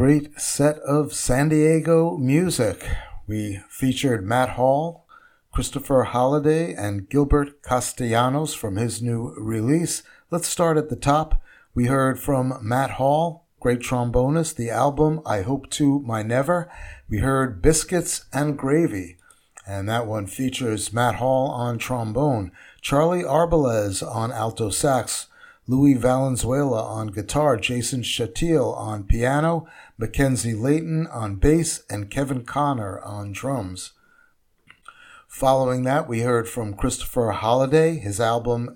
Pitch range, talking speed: 110-150 Hz, 125 wpm